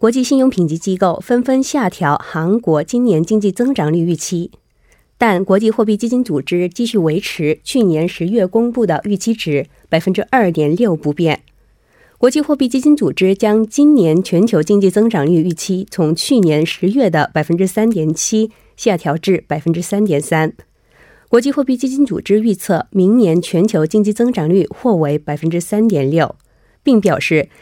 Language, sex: Korean, female